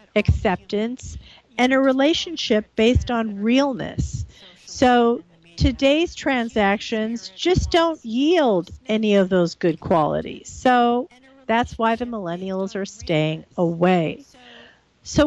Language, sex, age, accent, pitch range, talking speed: English, female, 50-69, American, 195-255 Hz, 105 wpm